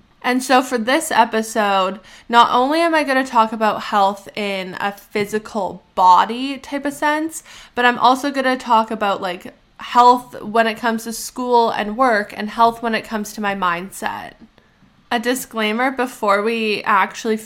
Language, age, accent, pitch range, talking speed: English, 10-29, American, 210-260 Hz, 170 wpm